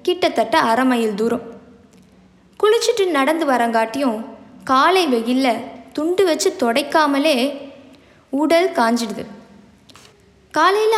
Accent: native